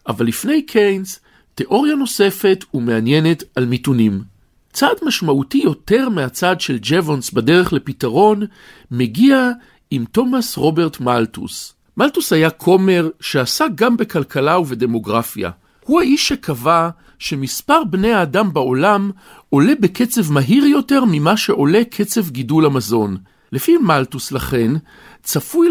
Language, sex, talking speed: Hebrew, male, 110 wpm